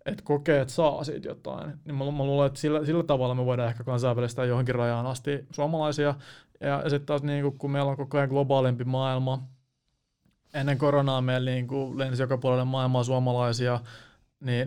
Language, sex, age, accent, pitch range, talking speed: Finnish, male, 20-39, native, 130-145 Hz, 170 wpm